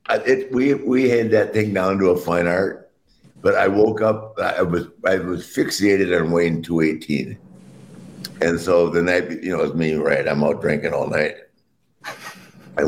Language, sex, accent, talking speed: English, male, American, 180 wpm